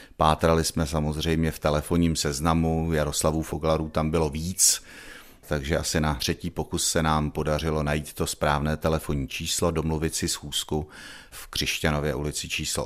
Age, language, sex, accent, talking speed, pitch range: 40-59, Czech, male, native, 145 wpm, 75-80 Hz